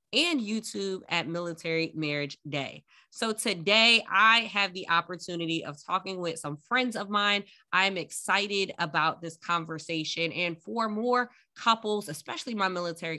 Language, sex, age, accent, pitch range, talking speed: English, female, 20-39, American, 165-215 Hz, 140 wpm